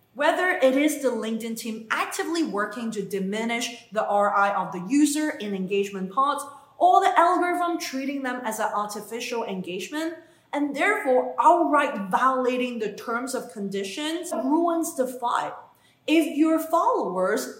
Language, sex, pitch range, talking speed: English, female, 210-310 Hz, 140 wpm